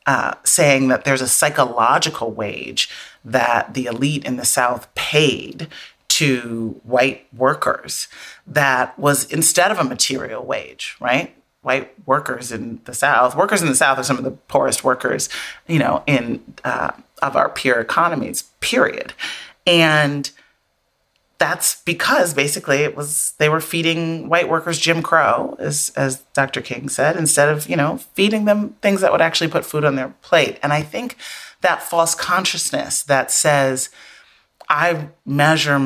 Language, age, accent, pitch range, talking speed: English, 30-49, American, 130-165 Hz, 155 wpm